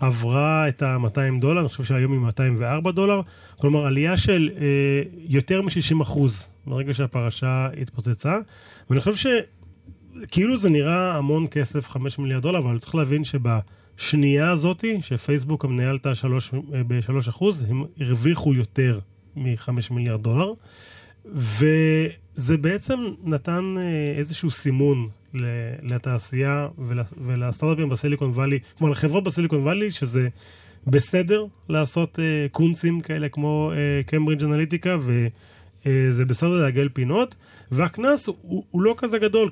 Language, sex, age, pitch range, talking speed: Hebrew, male, 30-49, 125-160 Hz, 115 wpm